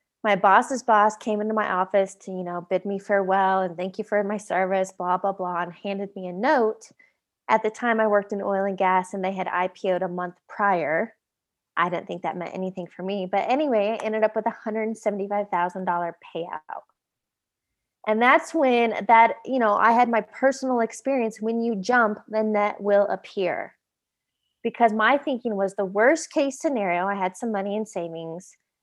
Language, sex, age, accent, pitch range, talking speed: English, female, 20-39, American, 190-235 Hz, 190 wpm